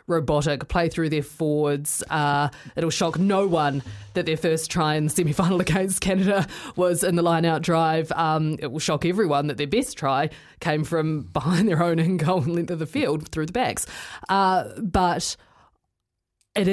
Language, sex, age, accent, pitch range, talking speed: English, female, 20-39, Australian, 160-200 Hz, 185 wpm